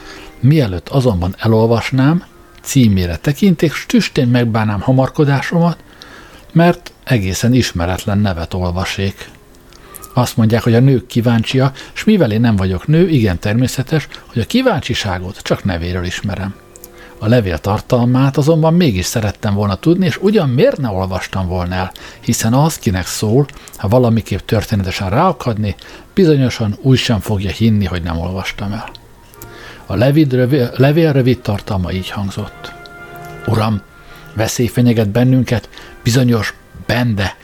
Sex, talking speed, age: male, 130 wpm, 60-79